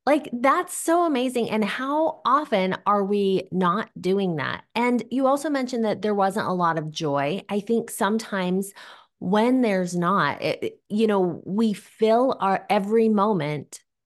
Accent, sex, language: American, female, English